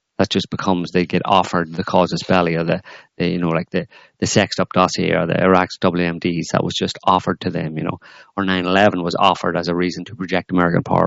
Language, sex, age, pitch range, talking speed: English, male, 30-49, 85-95 Hz, 235 wpm